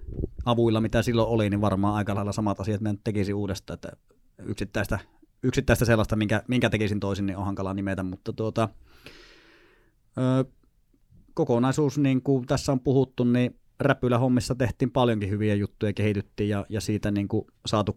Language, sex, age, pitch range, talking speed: Finnish, male, 30-49, 100-115 Hz, 160 wpm